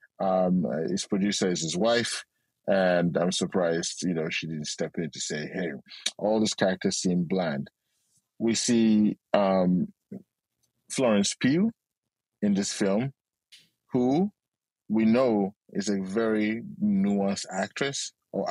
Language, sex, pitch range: English, male, 100-120 Hz